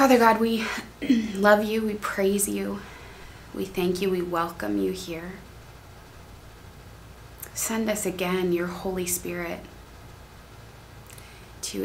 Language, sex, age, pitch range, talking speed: English, female, 20-39, 170-205 Hz, 110 wpm